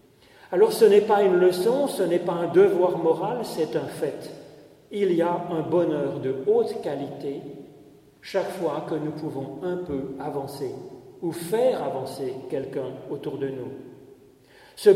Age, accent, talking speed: 40-59, French, 155 wpm